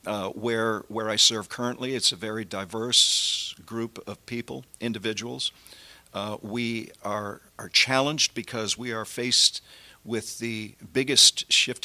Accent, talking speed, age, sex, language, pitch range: American, 140 wpm, 50-69, male, English, 105-120 Hz